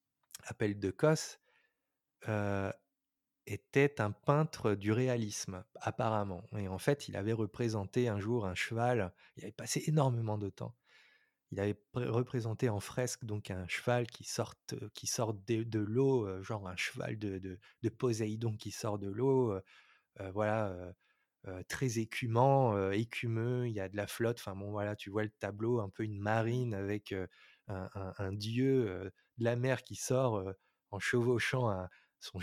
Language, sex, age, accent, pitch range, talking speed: French, male, 20-39, French, 105-125 Hz, 160 wpm